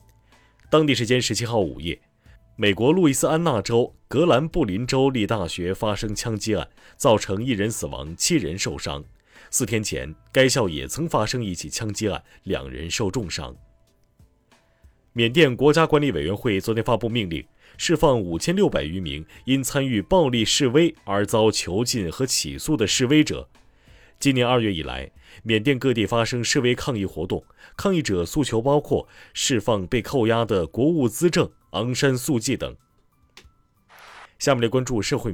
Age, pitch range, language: 30-49, 100-135 Hz, Chinese